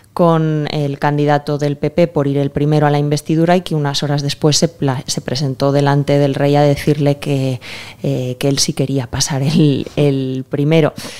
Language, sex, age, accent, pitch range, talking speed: Spanish, female, 20-39, Spanish, 135-155 Hz, 190 wpm